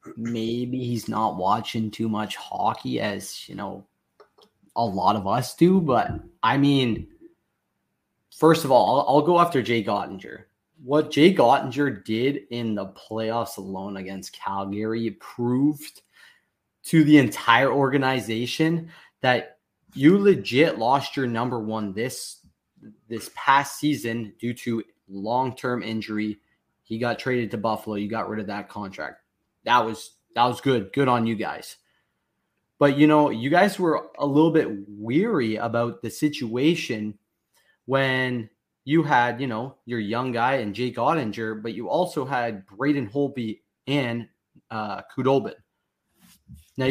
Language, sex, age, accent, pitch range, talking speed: English, male, 20-39, American, 110-140 Hz, 140 wpm